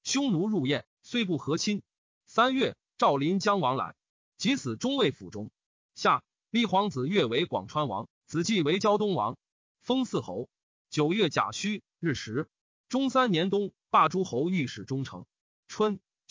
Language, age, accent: Chinese, 30-49, native